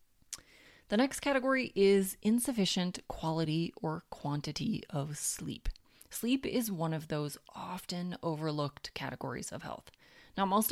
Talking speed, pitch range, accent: 125 wpm, 155-215 Hz, American